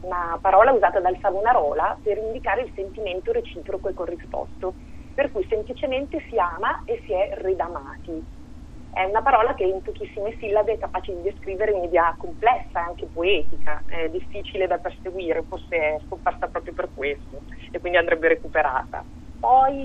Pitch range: 175-220 Hz